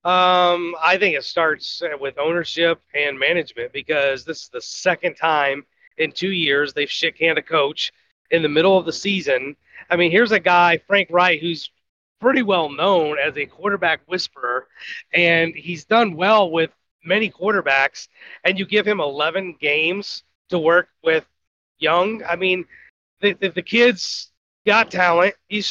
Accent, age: American, 30-49